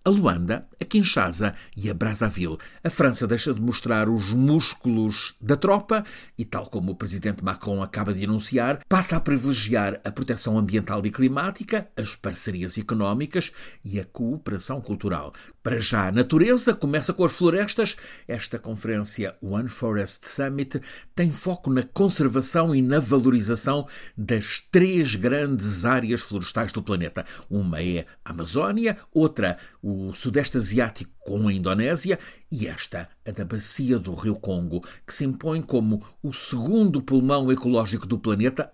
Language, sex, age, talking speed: Portuguese, male, 50-69, 150 wpm